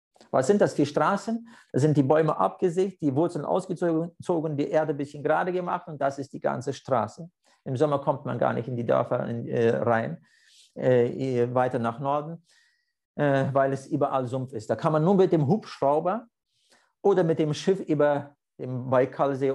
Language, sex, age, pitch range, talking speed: German, male, 50-69, 140-175 Hz, 175 wpm